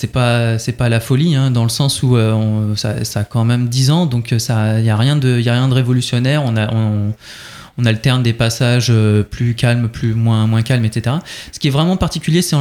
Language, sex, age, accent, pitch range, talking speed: French, male, 20-39, French, 115-140 Hz, 245 wpm